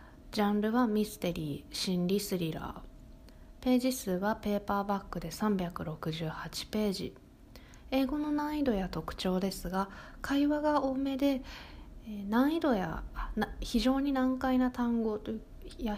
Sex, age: female, 20-39